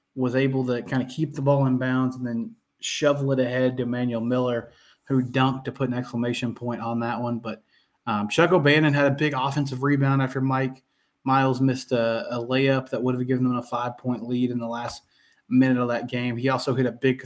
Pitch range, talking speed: 120-135 Hz, 225 wpm